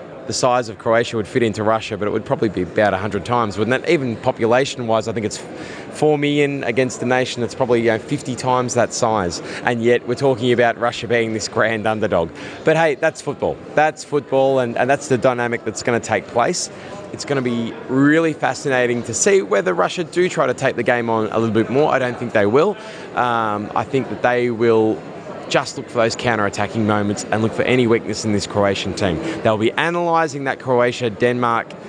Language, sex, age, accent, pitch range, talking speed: English, male, 20-39, Australian, 110-140 Hz, 215 wpm